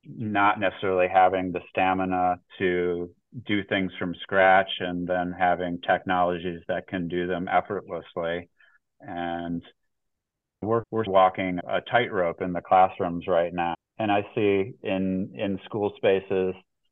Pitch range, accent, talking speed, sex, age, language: 90-95 Hz, American, 130 wpm, male, 30-49, English